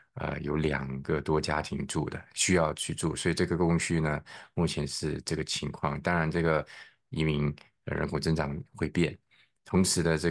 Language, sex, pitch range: Chinese, male, 75-85 Hz